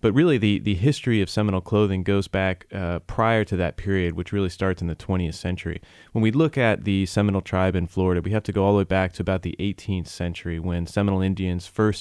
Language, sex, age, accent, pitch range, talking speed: English, male, 20-39, American, 90-100 Hz, 240 wpm